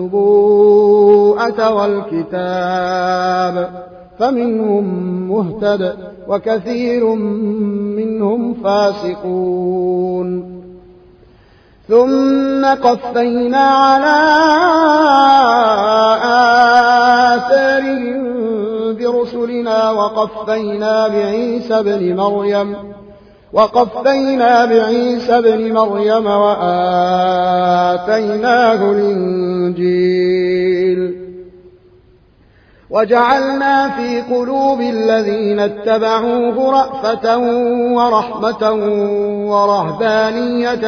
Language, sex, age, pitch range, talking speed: Arabic, male, 30-49, 180-235 Hz, 45 wpm